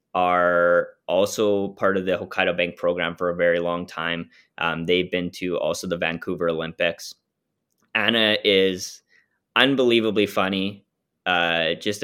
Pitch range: 85-100 Hz